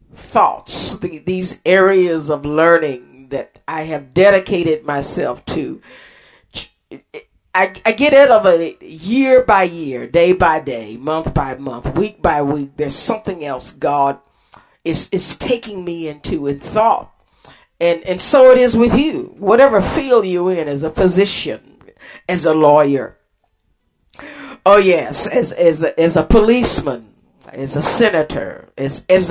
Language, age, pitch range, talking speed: English, 50-69, 155-220 Hz, 145 wpm